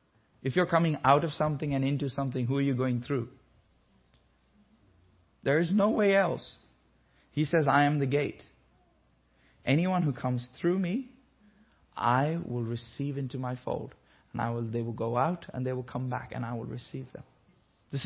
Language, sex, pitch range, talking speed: English, male, 125-170 Hz, 180 wpm